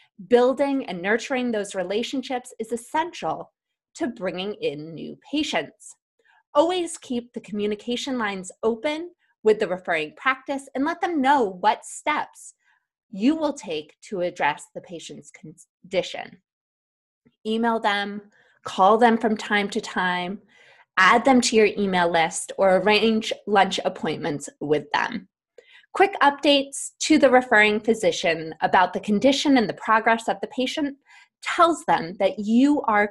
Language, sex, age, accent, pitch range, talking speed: English, female, 20-39, American, 195-275 Hz, 140 wpm